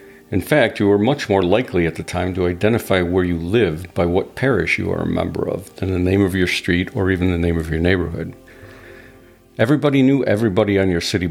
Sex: male